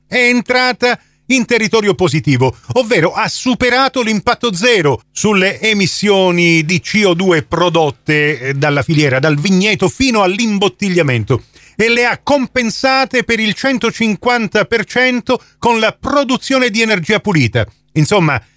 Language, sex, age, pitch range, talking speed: Italian, male, 40-59, 150-225 Hz, 115 wpm